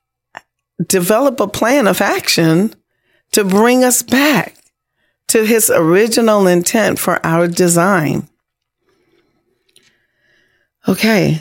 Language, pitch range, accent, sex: English, 160-200 Hz, American, female